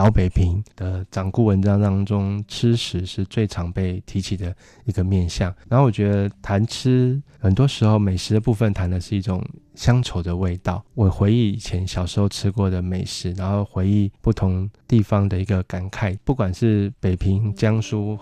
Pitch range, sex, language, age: 95-110 Hz, male, Chinese, 20-39